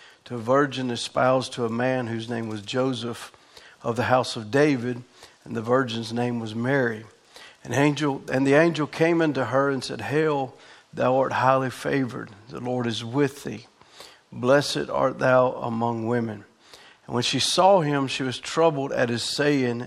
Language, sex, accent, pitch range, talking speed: English, male, American, 120-140 Hz, 170 wpm